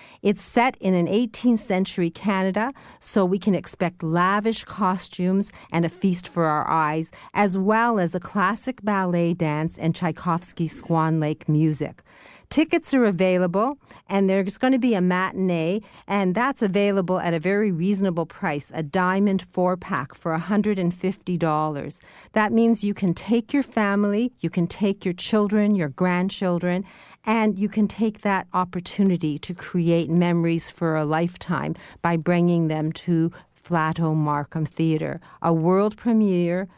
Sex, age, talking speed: female, 40-59, 145 wpm